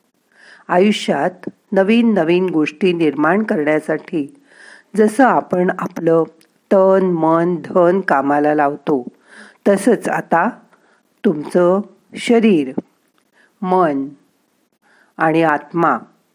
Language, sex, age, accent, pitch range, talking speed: Marathi, female, 50-69, native, 160-215 Hz, 75 wpm